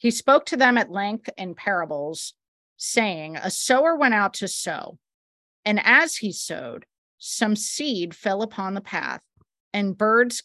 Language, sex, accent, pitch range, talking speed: English, female, American, 180-245 Hz, 155 wpm